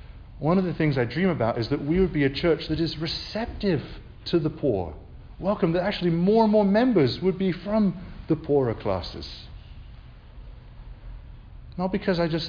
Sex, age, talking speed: male, 40-59, 180 wpm